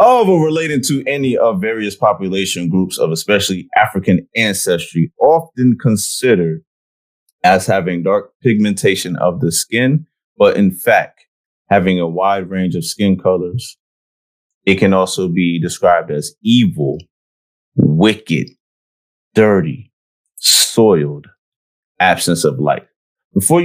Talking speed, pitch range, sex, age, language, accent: 115 wpm, 85-125 Hz, male, 30-49, English, American